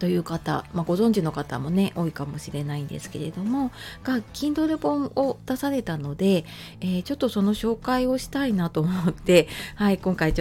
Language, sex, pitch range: Japanese, female, 160-225 Hz